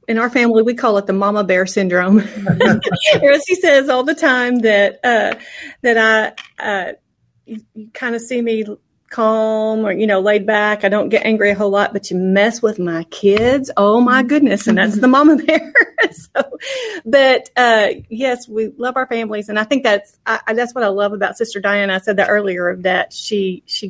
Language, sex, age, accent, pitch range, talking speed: English, female, 40-59, American, 200-245 Hz, 200 wpm